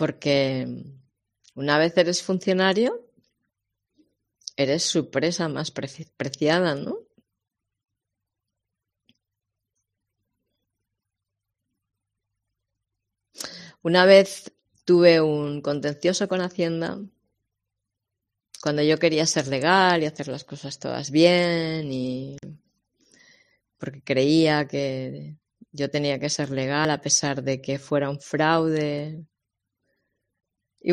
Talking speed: 90 wpm